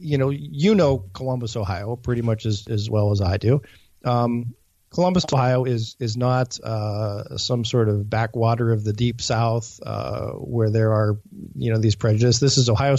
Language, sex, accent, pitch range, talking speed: English, male, American, 110-125 Hz, 185 wpm